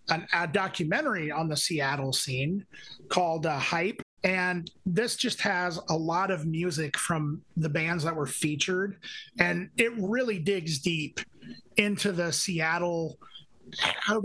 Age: 30-49